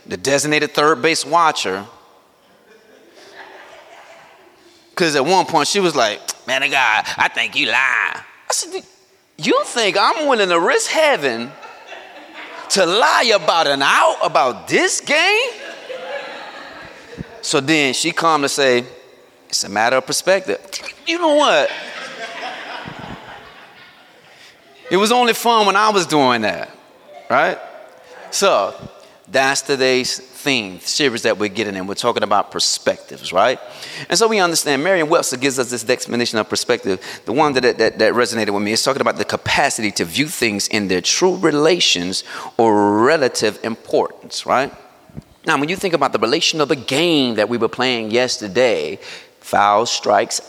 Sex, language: male, English